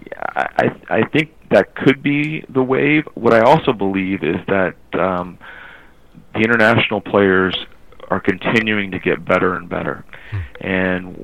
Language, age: English, 40-59